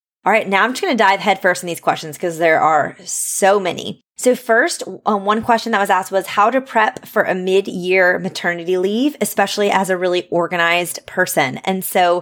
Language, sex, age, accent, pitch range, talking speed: English, female, 20-39, American, 170-205 Hz, 210 wpm